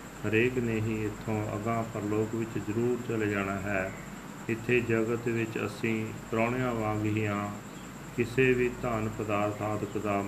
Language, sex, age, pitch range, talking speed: Punjabi, male, 40-59, 105-115 Hz, 140 wpm